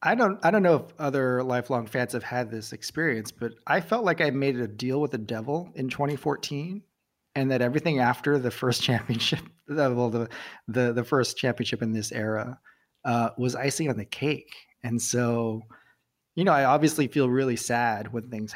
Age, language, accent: 30-49, English, American